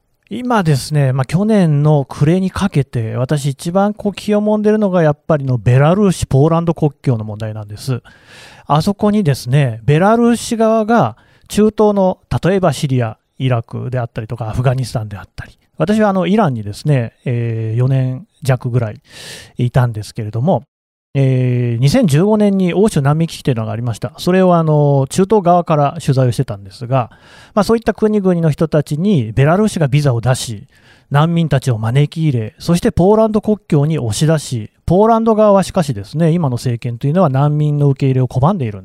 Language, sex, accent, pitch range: Japanese, male, native, 125-185 Hz